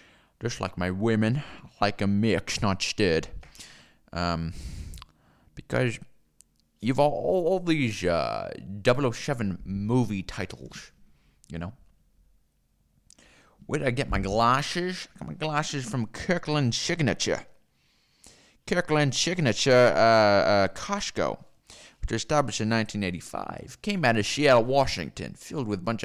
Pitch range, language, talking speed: 95-125 Hz, English, 125 wpm